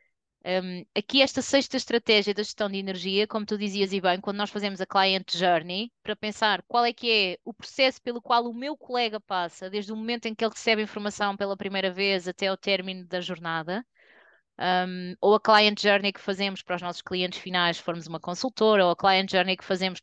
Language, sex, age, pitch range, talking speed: Portuguese, female, 20-39, 190-230 Hz, 210 wpm